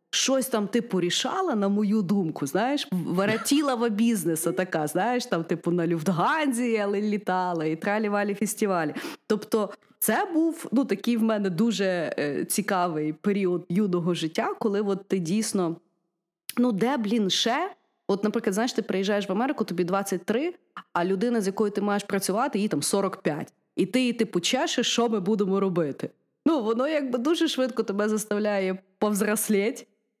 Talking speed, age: 155 wpm, 30-49